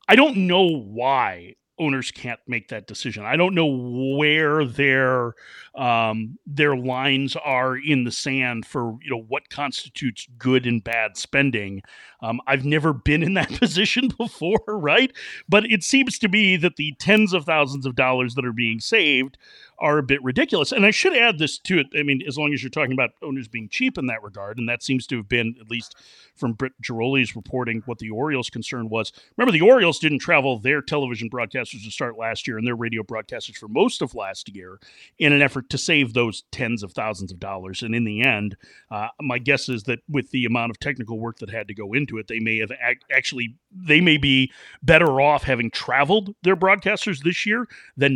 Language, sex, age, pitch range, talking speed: English, male, 40-59, 115-150 Hz, 205 wpm